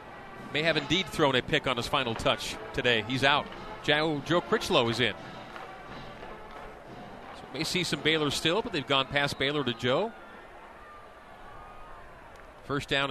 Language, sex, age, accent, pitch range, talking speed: English, male, 40-59, American, 130-170 Hz, 145 wpm